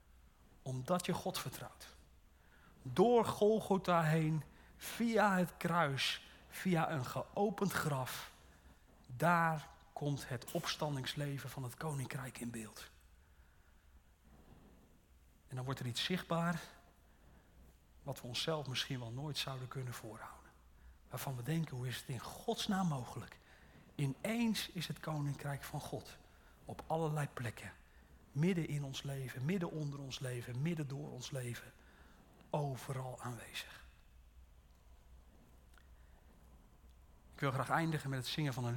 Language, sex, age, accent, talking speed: Dutch, male, 40-59, Dutch, 120 wpm